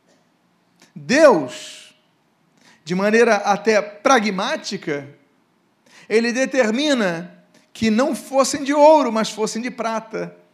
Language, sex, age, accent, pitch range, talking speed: Portuguese, male, 50-69, Brazilian, 205-265 Hz, 90 wpm